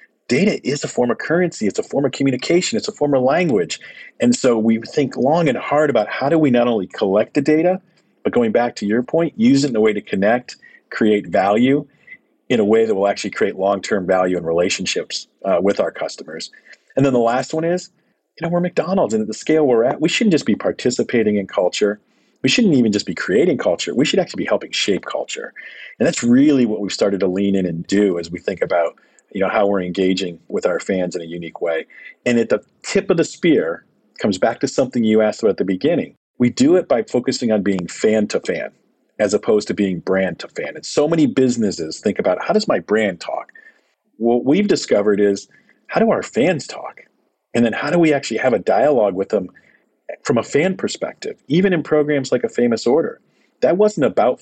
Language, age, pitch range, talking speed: English, 40-59, 105-155 Hz, 225 wpm